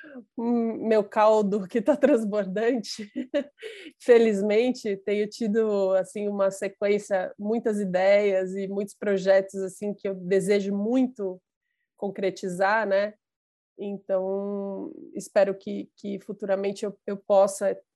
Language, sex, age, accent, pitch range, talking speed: Portuguese, female, 20-39, Brazilian, 190-210 Hz, 105 wpm